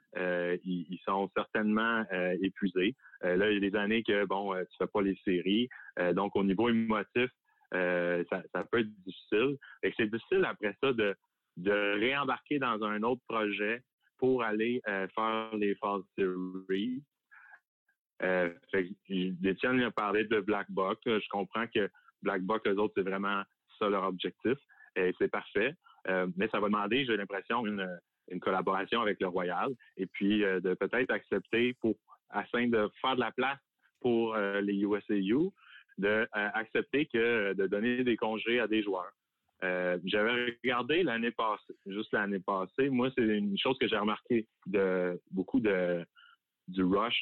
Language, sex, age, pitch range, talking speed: French, male, 30-49, 95-115 Hz, 175 wpm